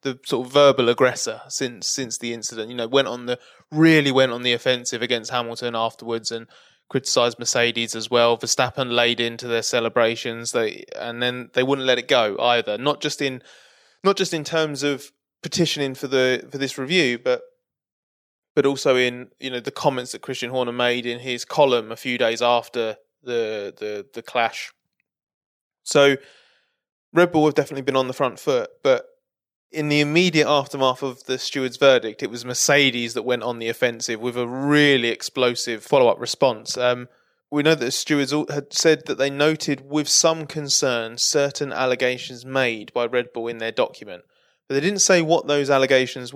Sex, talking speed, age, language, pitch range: male, 185 wpm, 20-39, English, 125-145 Hz